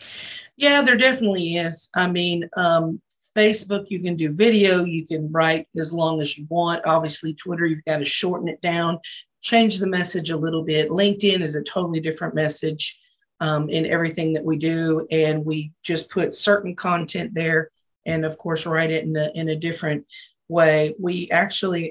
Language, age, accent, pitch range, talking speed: English, 40-59, American, 160-200 Hz, 180 wpm